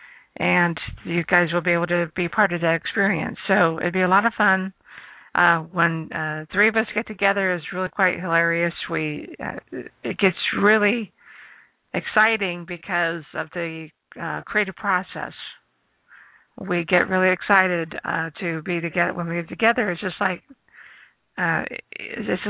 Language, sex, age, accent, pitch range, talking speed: English, female, 50-69, American, 175-205 Hz, 155 wpm